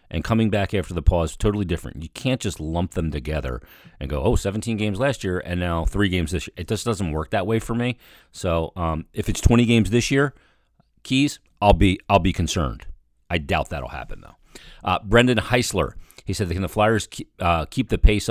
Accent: American